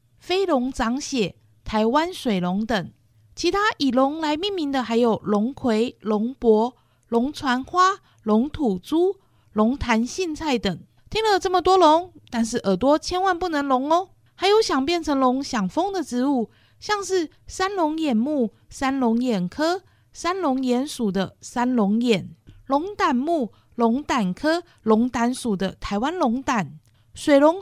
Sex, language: female, Chinese